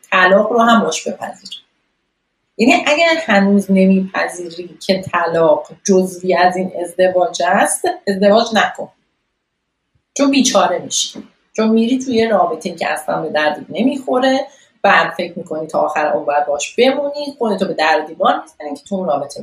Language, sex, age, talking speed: Persian, female, 40-59, 140 wpm